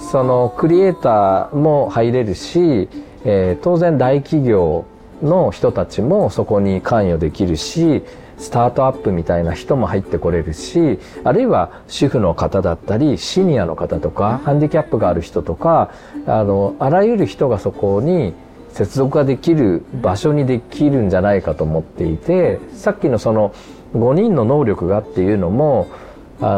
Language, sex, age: Japanese, male, 40-59